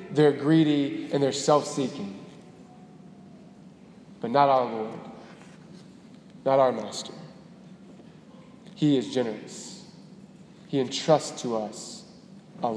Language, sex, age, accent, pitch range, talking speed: English, male, 20-39, American, 150-195 Hz, 95 wpm